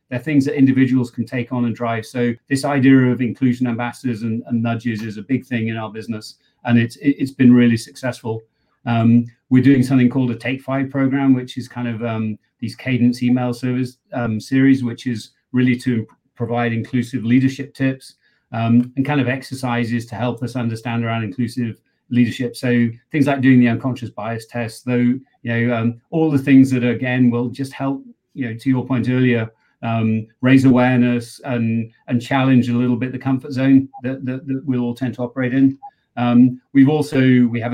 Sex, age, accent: male, 40-59, British